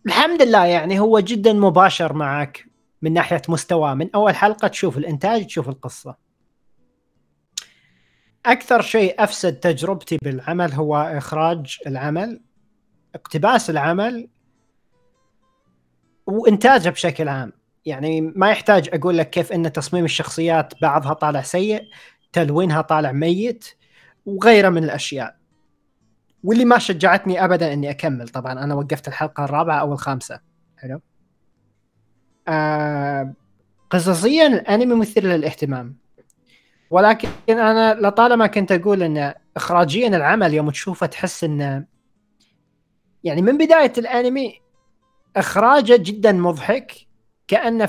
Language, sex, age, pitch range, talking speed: Arabic, male, 30-49, 145-205 Hz, 110 wpm